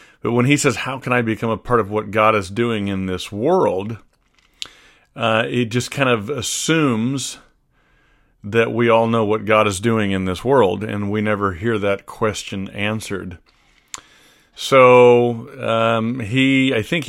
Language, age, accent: English, 40-59, American